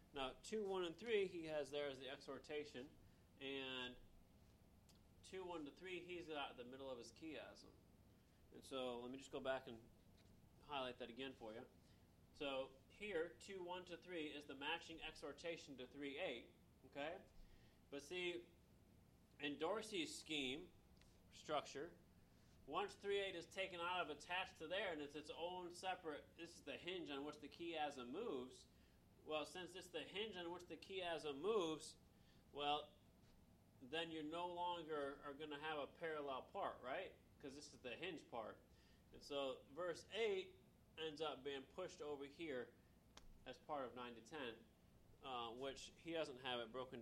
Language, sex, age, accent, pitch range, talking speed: English, male, 30-49, American, 130-175 Hz, 170 wpm